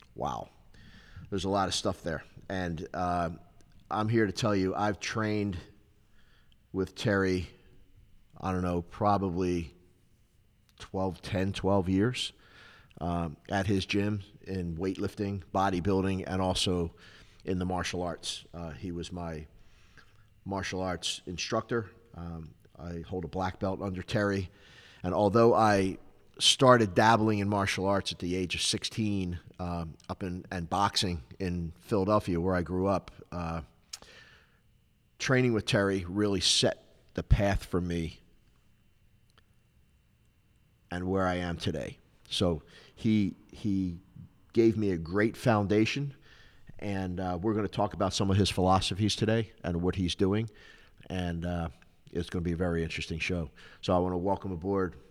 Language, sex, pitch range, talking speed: English, male, 90-105 Hz, 145 wpm